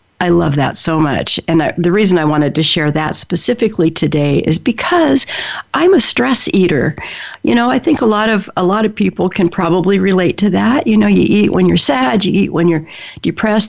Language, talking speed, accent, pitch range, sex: English, 220 wpm, American, 160-210 Hz, female